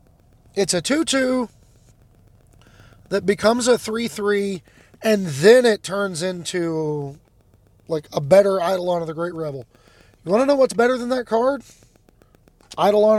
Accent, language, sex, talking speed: American, English, male, 135 wpm